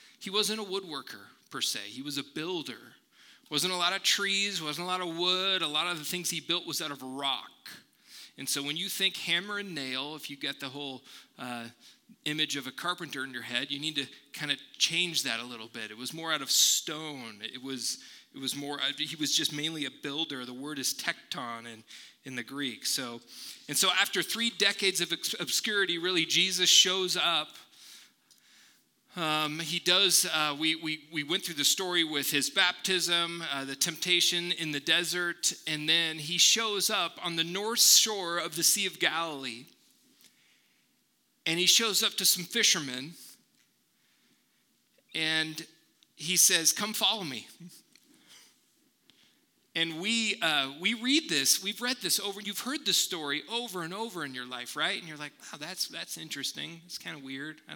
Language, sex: English, male